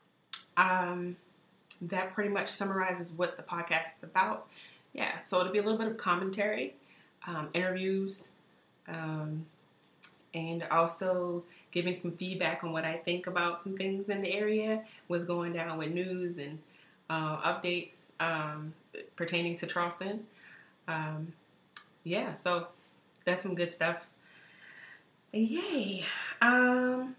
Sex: female